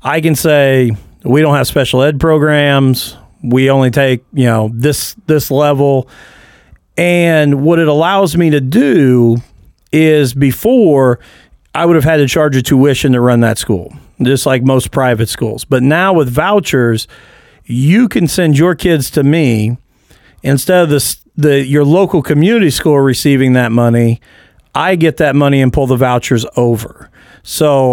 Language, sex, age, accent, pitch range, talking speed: English, male, 40-59, American, 125-155 Hz, 160 wpm